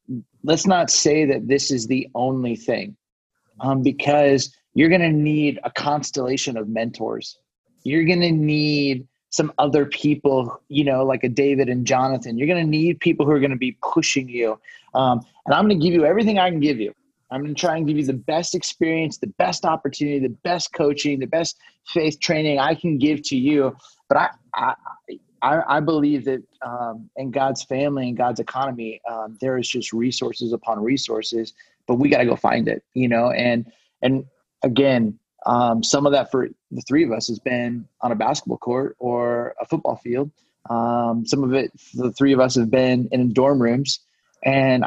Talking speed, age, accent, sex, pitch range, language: 200 wpm, 30-49, American, male, 125-150 Hz, English